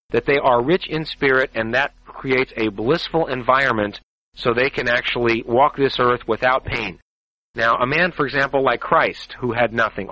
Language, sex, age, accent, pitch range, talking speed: English, male, 40-59, American, 120-145 Hz, 185 wpm